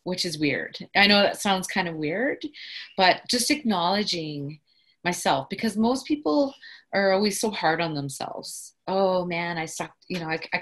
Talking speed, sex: 175 wpm, female